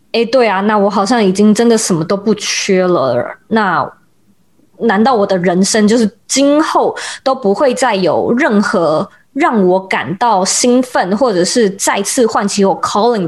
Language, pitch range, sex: Chinese, 200-275 Hz, female